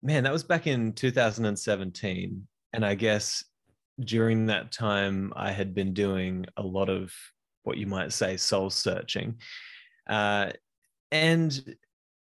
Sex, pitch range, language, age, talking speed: male, 100-130 Hz, English, 20-39, 135 wpm